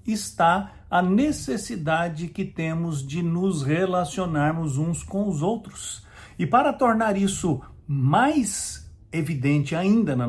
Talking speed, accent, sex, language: 115 wpm, Brazilian, male, English